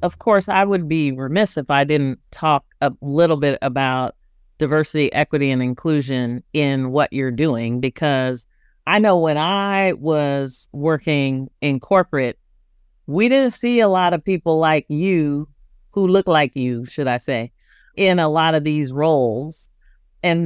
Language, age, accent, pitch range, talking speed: English, 40-59, American, 145-195 Hz, 160 wpm